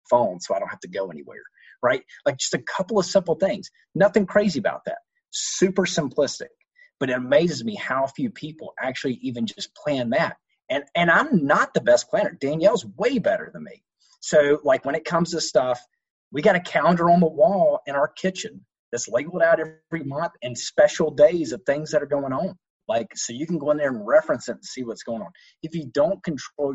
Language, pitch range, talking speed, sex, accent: English, 140-200 Hz, 215 wpm, male, American